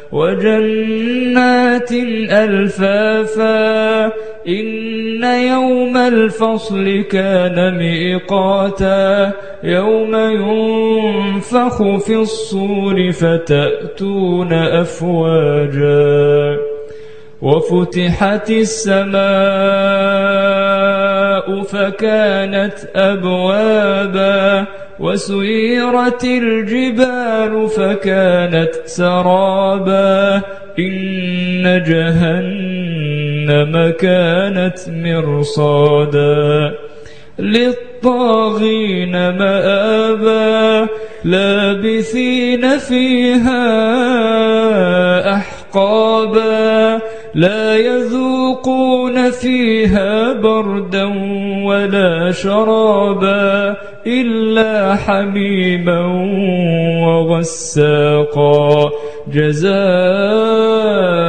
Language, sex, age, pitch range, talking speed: Arabic, male, 20-39, 170-220 Hz, 35 wpm